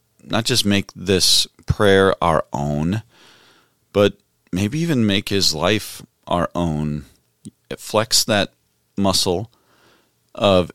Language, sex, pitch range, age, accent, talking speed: English, male, 70-95 Hz, 40-59, American, 105 wpm